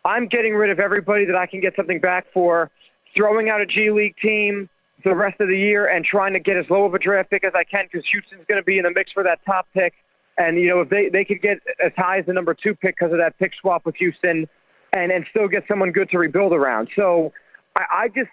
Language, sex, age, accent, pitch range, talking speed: English, male, 40-59, American, 175-200 Hz, 270 wpm